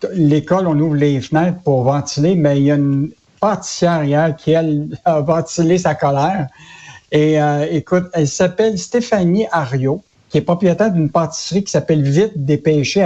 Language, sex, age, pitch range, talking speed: French, male, 60-79, 140-170 Hz, 160 wpm